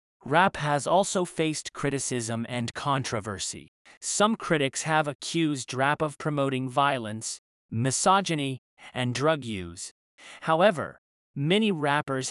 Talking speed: 105 wpm